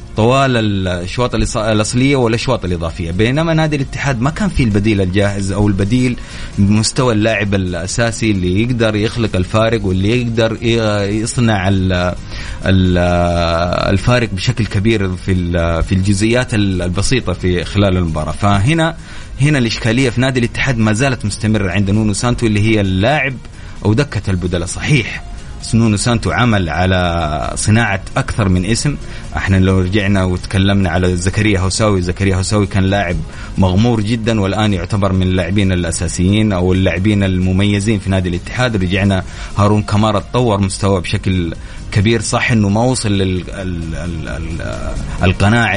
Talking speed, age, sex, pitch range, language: 130 wpm, 30-49, male, 95-115 Hz, Arabic